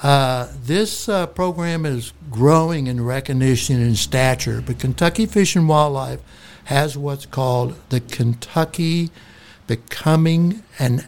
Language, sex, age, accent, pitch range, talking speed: English, male, 60-79, American, 120-150 Hz, 120 wpm